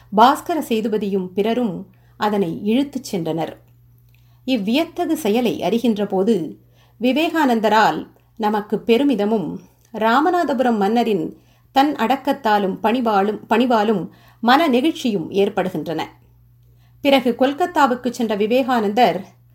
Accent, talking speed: native, 75 wpm